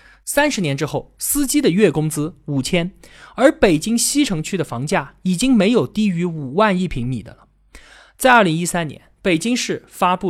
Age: 20-39